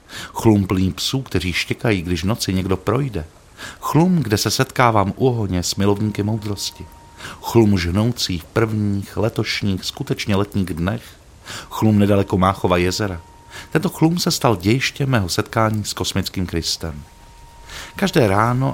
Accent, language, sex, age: native, Czech, male, 50-69